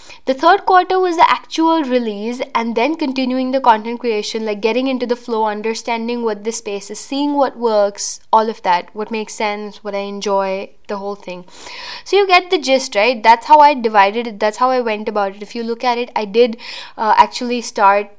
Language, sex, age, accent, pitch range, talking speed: English, female, 10-29, Indian, 205-265 Hz, 215 wpm